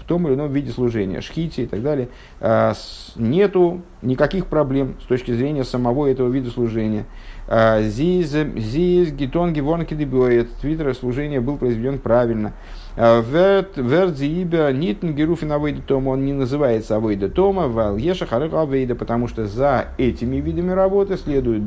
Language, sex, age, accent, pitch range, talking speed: Russian, male, 50-69, native, 110-160 Hz, 125 wpm